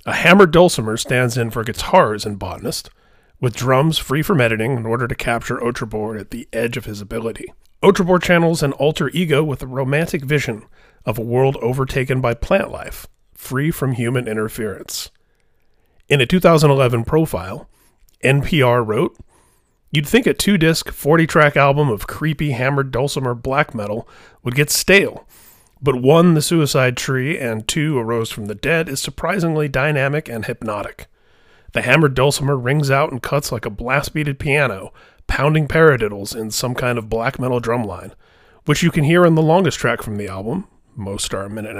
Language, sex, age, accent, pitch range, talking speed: English, male, 30-49, American, 115-150 Hz, 170 wpm